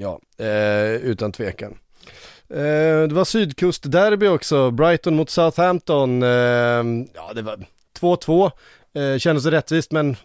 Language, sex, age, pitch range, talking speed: Swedish, male, 30-49, 120-165 Hz, 130 wpm